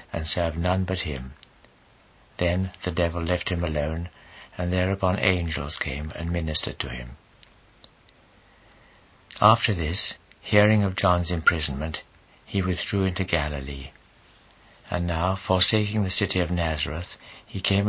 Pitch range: 85-100 Hz